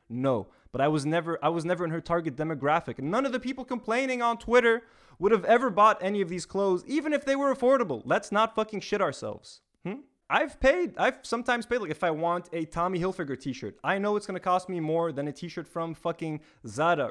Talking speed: 230 wpm